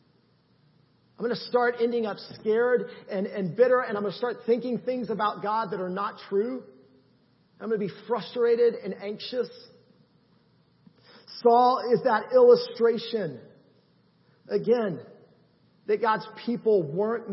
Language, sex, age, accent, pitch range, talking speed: English, male, 40-59, American, 160-215 Hz, 135 wpm